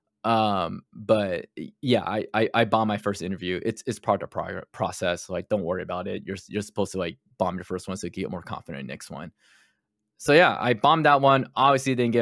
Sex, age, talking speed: male, 20-39, 245 wpm